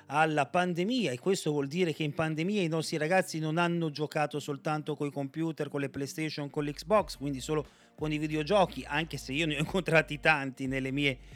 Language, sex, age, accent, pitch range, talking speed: Italian, male, 40-59, native, 140-185 Hz, 200 wpm